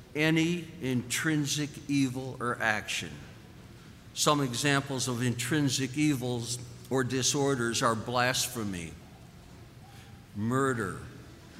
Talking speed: 80 wpm